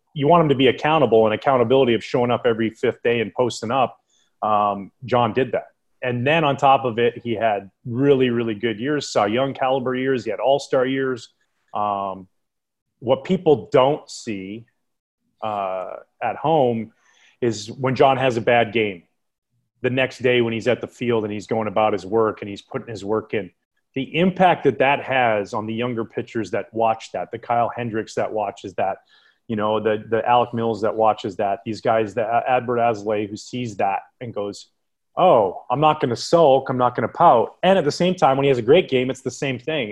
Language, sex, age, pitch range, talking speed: English, male, 30-49, 110-130 Hz, 210 wpm